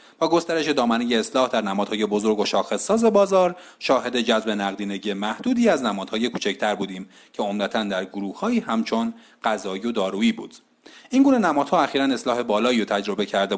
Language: Persian